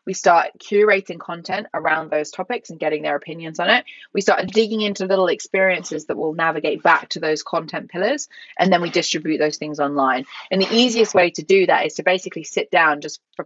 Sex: female